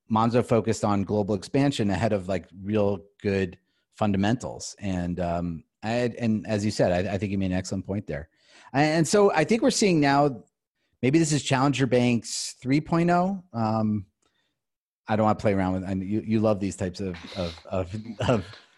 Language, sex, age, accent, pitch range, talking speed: English, male, 30-49, American, 95-120 Hz, 190 wpm